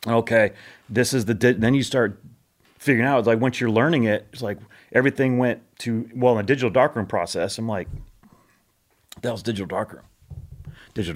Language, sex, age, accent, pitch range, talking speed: English, male, 30-49, American, 105-125 Hz, 195 wpm